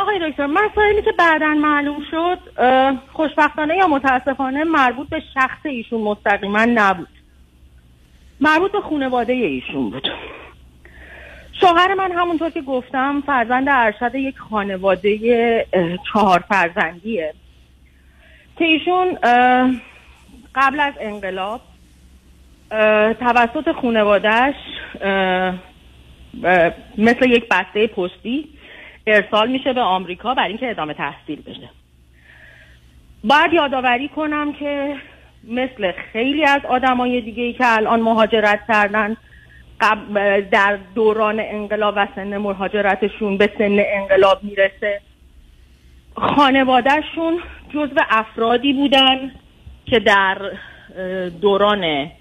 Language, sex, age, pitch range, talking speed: Persian, female, 40-59, 185-275 Hz, 100 wpm